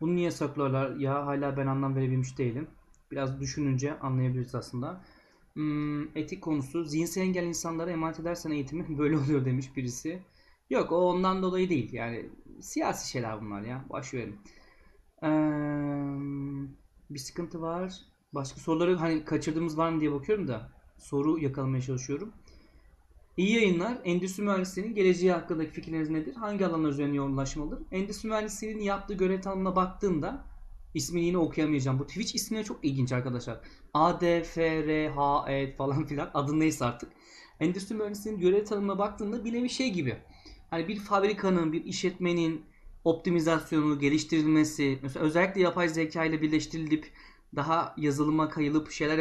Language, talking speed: Turkish, 135 wpm